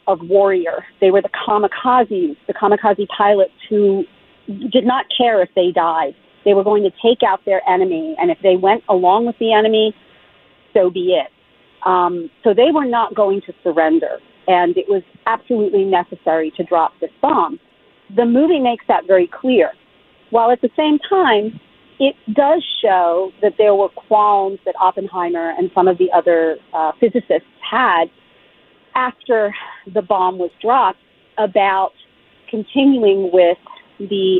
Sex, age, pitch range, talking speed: female, 40-59, 185-255 Hz, 155 wpm